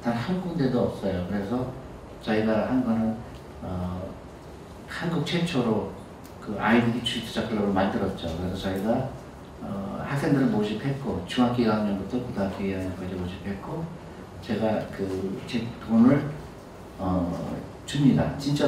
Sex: male